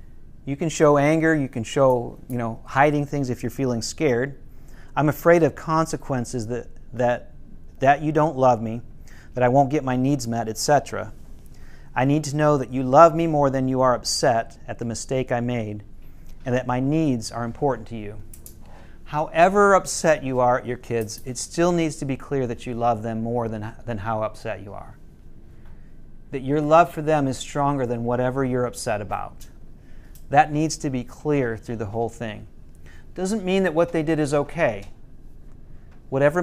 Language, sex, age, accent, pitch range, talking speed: English, male, 40-59, American, 115-150 Hz, 190 wpm